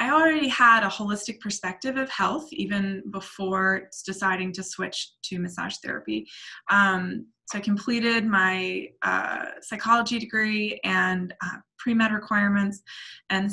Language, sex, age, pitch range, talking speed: English, female, 20-39, 190-230 Hz, 130 wpm